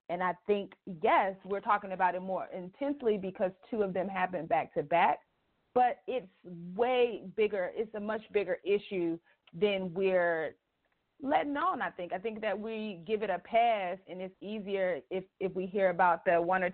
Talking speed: 185 wpm